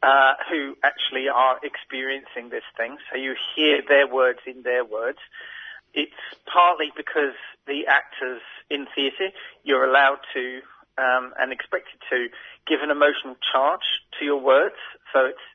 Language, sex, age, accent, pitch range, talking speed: English, male, 40-59, British, 130-150 Hz, 145 wpm